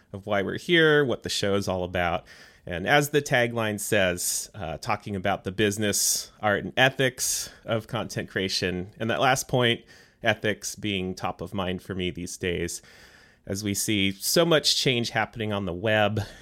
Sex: male